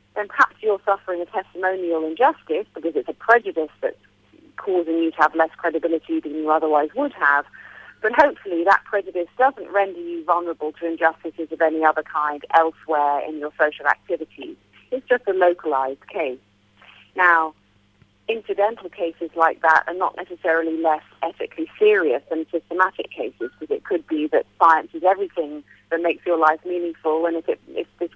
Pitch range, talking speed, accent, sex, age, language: 155-200 Hz, 165 wpm, British, female, 40-59, English